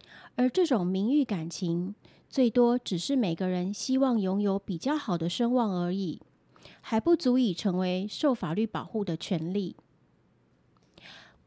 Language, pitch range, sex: Chinese, 185-250 Hz, female